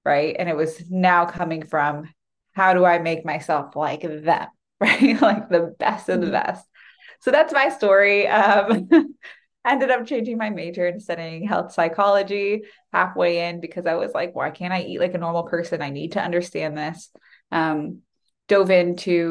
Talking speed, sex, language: 180 wpm, female, English